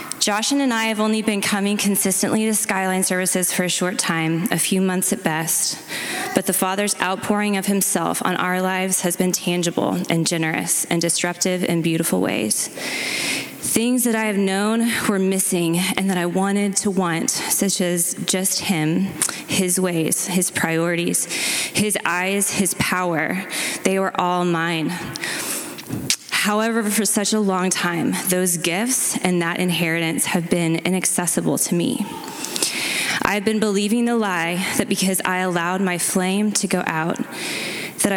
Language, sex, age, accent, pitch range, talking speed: English, female, 20-39, American, 175-205 Hz, 155 wpm